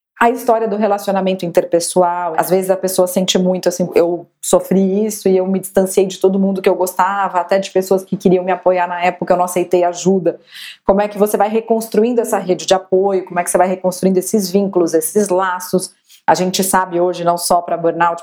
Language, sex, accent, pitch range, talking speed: Portuguese, female, Brazilian, 165-195 Hz, 215 wpm